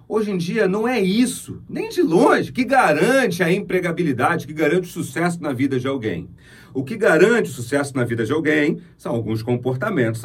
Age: 40-59